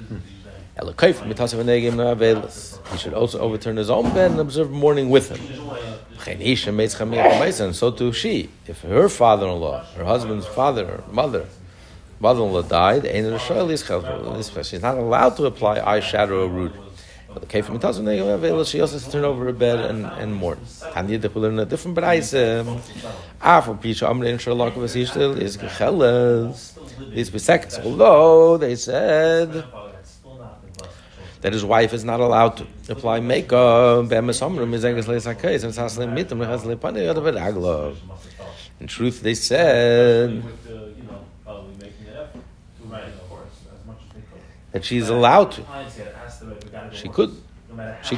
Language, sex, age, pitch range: English, male, 60-79, 105-125 Hz